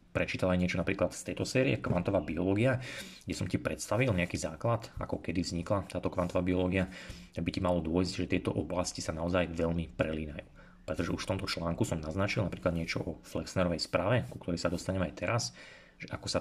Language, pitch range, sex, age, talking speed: Slovak, 85-95 Hz, male, 30-49, 195 wpm